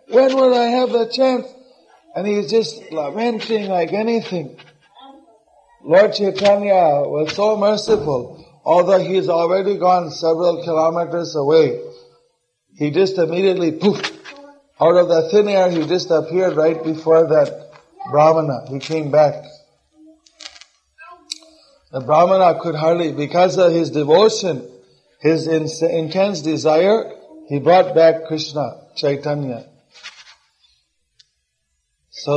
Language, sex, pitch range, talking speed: English, male, 155-195 Hz, 110 wpm